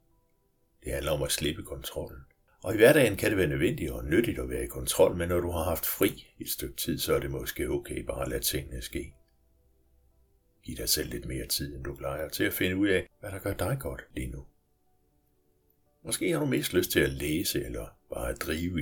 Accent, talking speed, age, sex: native, 225 wpm, 60-79, male